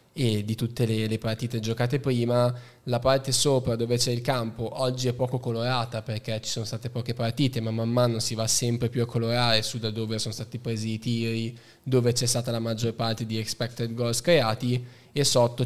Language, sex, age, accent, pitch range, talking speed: Italian, male, 10-29, native, 115-125 Hz, 205 wpm